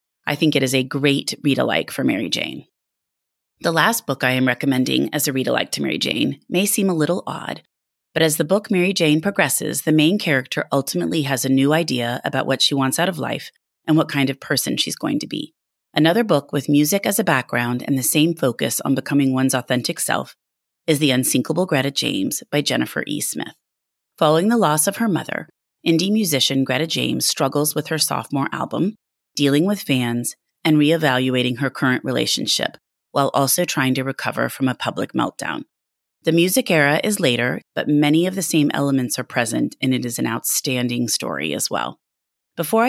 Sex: female